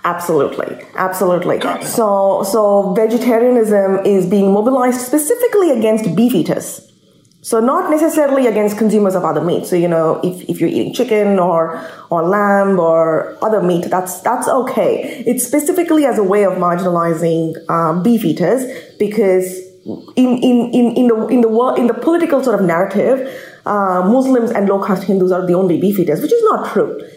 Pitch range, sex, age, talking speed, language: 180-240 Hz, female, 20-39, 170 wpm, English